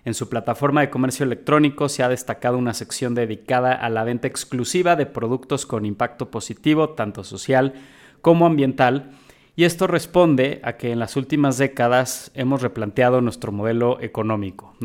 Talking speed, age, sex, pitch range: 160 wpm, 30-49, male, 115-135 Hz